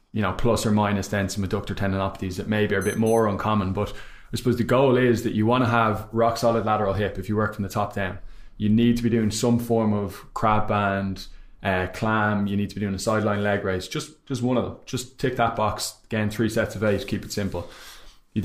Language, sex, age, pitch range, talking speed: English, male, 20-39, 100-115 Hz, 245 wpm